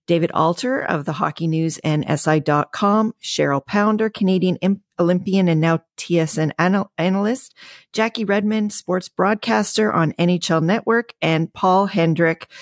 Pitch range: 155-205 Hz